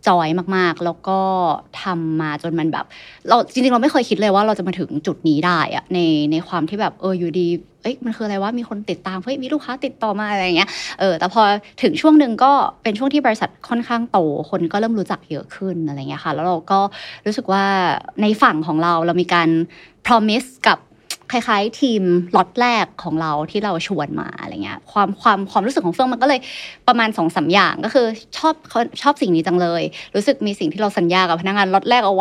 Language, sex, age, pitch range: Thai, female, 20-39, 175-225 Hz